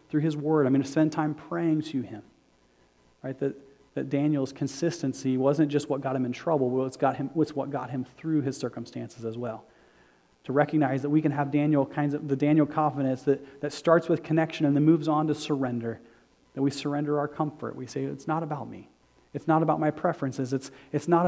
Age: 30-49